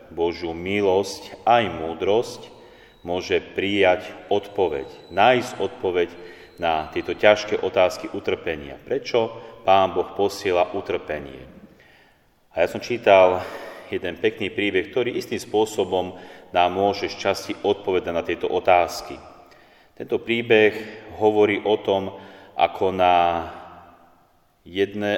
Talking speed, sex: 105 wpm, male